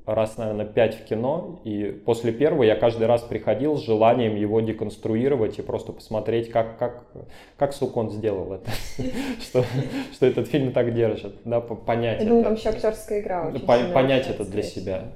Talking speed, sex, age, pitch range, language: 135 wpm, male, 20-39, 110-125 Hz, Russian